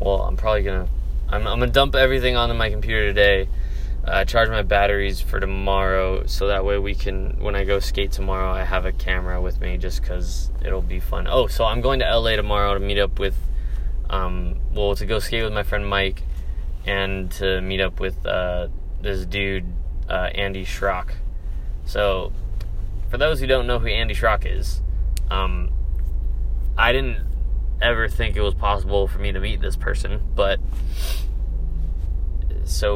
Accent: American